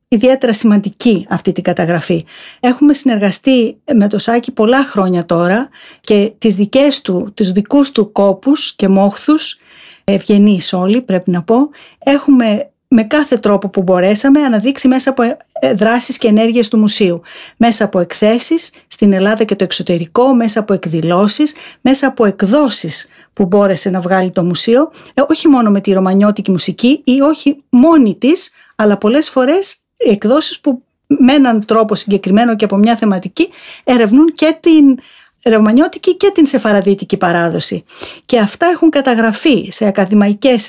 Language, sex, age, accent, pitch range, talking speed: Greek, female, 50-69, native, 200-285 Hz, 145 wpm